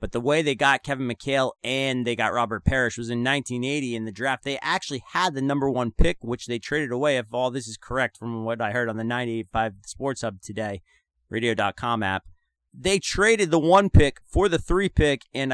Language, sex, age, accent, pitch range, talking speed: English, male, 30-49, American, 125-185 Hz, 215 wpm